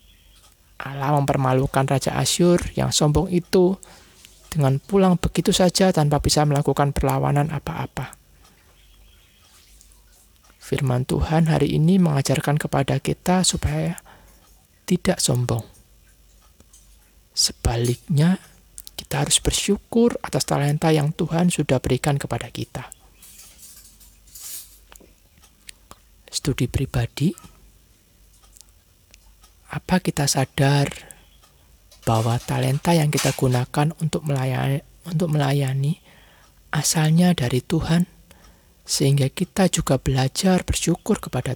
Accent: native